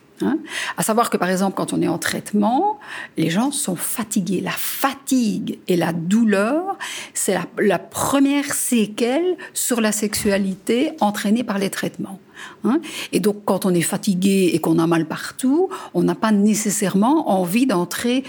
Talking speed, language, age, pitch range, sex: 165 wpm, English, 60-79, 190-245 Hz, female